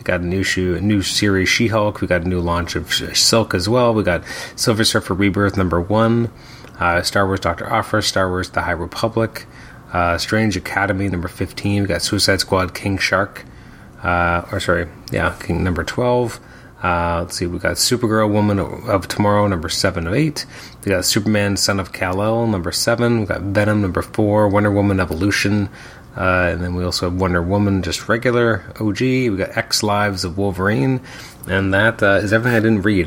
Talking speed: 195 wpm